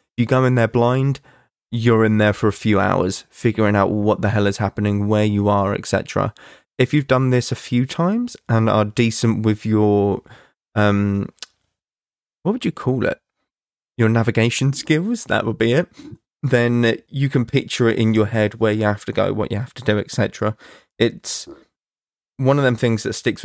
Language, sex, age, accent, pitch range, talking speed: English, male, 20-39, British, 105-120 Hz, 190 wpm